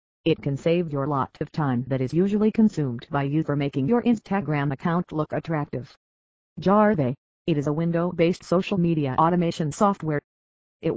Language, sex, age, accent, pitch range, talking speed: English, female, 40-59, American, 145-185 Hz, 165 wpm